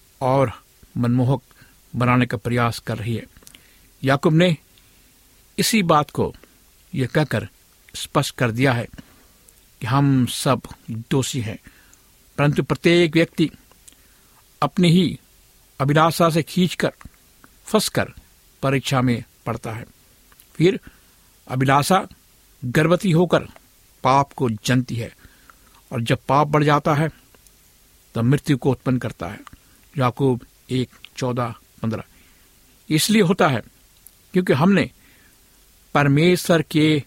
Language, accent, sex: Hindi, native, male